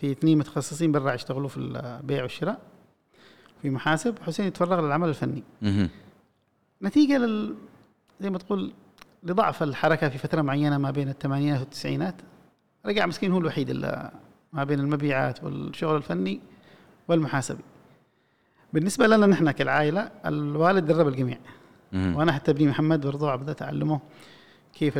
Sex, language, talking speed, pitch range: male, Arabic, 130 wpm, 140-165 Hz